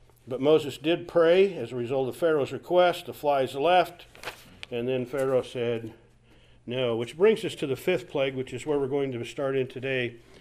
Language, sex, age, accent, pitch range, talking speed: English, male, 50-69, American, 135-185 Hz, 195 wpm